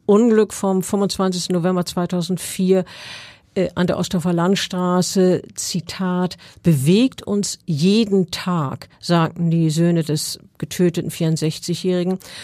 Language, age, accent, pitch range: German, 50-69, German, 170-195 Hz